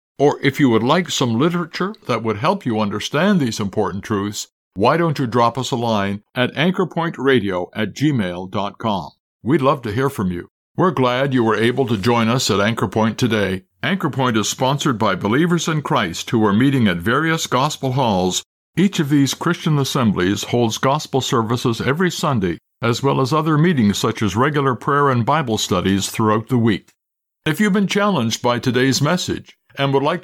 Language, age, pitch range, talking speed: English, 60-79, 110-155 Hz, 185 wpm